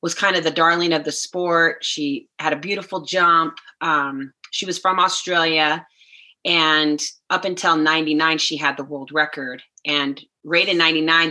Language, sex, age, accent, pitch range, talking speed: English, female, 30-49, American, 150-185 Hz, 165 wpm